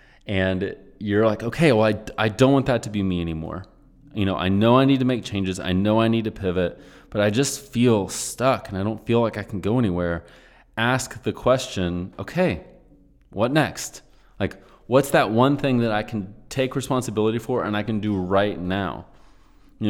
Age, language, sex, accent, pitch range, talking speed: 30-49, English, male, American, 95-120 Hz, 200 wpm